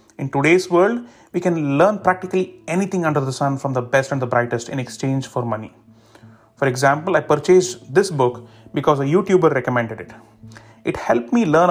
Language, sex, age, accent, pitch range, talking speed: English, male, 30-49, Indian, 120-165 Hz, 185 wpm